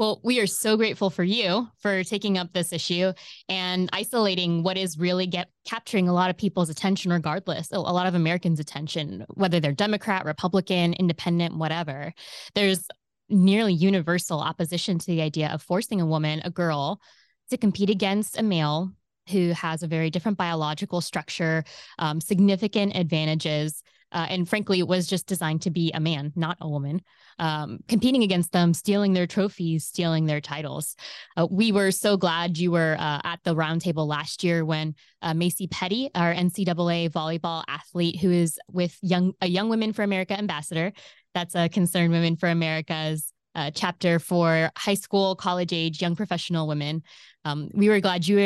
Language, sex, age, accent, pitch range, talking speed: English, female, 20-39, American, 165-190 Hz, 175 wpm